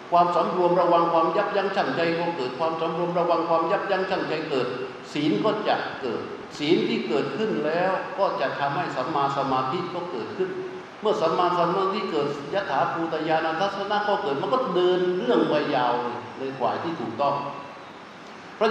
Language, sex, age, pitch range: Thai, male, 60-79, 155-195 Hz